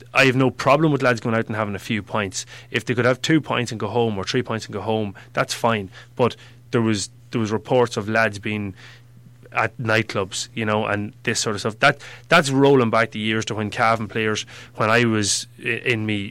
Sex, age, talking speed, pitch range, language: male, 30-49, 235 wpm, 110-130 Hz, English